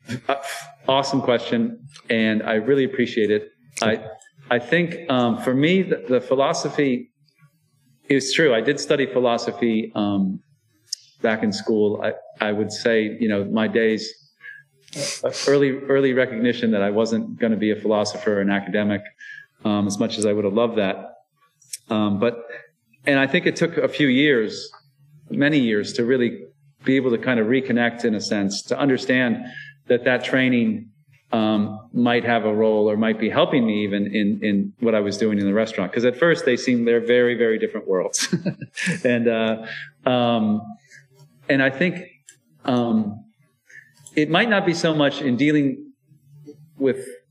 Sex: male